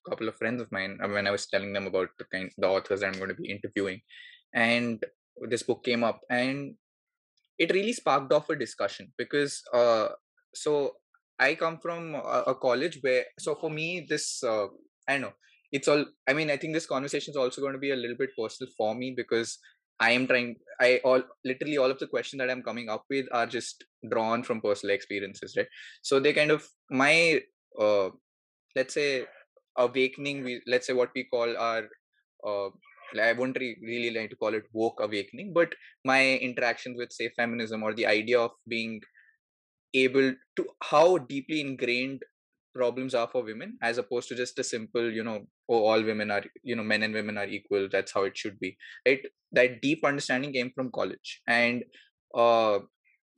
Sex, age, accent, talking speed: male, 20-39, Indian, 195 wpm